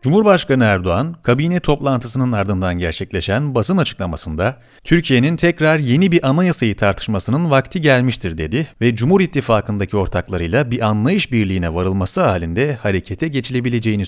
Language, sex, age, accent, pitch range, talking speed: Turkish, male, 40-59, native, 100-160 Hz, 120 wpm